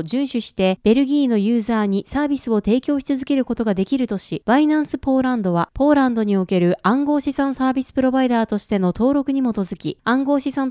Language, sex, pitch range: Japanese, female, 205-280 Hz